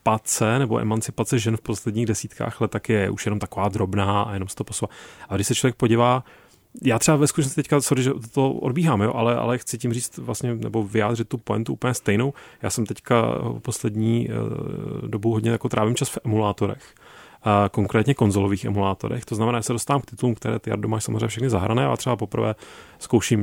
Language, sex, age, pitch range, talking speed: Czech, male, 30-49, 105-130 Hz, 200 wpm